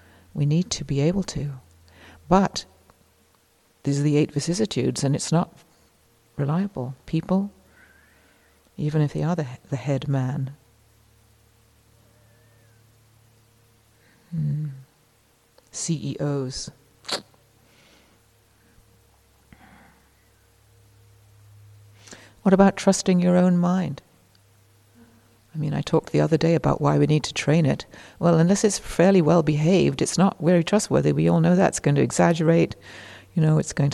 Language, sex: English, female